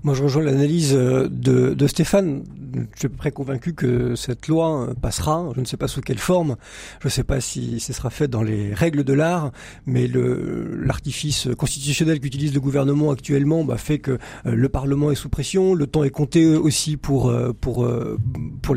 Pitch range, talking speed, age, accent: 125-150 Hz, 195 wpm, 40-59, French